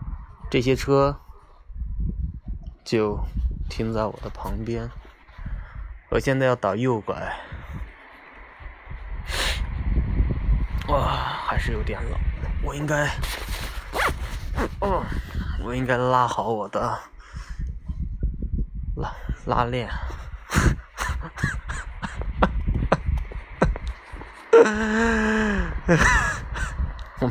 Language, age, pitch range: Chinese, 20-39, 70-105 Hz